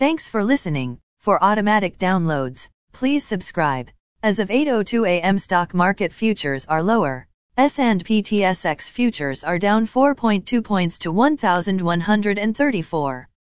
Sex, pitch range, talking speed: female, 170-225 Hz, 115 wpm